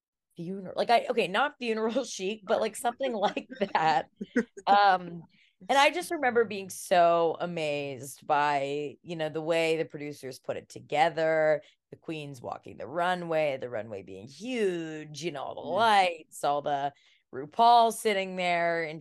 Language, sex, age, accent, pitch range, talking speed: English, female, 20-39, American, 150-195 Hz, 155 wpm